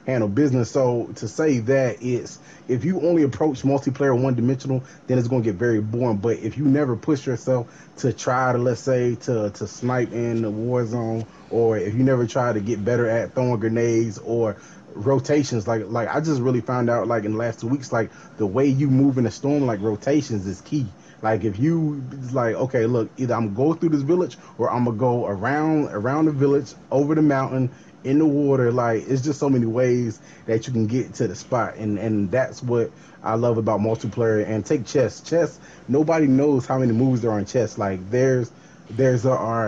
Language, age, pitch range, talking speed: English, 20-39, 115-140 Hz, 210 wpm